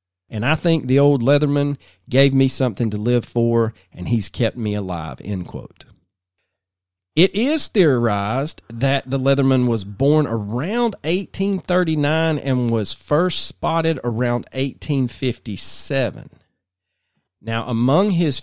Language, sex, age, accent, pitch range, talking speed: English, male, 40-59, American, 105-155 Hz, 125 wpm